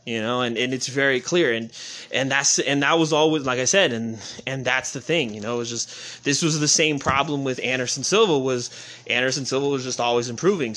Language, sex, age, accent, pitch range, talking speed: English, male, 20-39, American, 135-180 Hz, 235 wpm